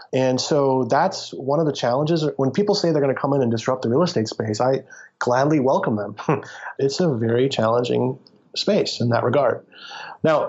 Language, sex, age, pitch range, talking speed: English, male, 30-49, 115-150 Hz, 195 wpm